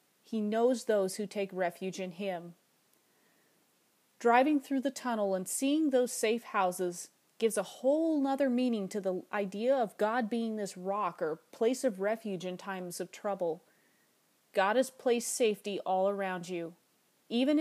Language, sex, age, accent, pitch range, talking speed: English, female, 30-49, American, 190-245 Hz, 155 wpm